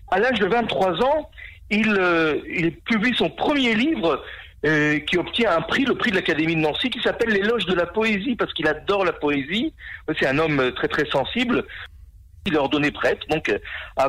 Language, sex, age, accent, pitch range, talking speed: French, male, 50-69, French, 165-235 Hz, 200 wpm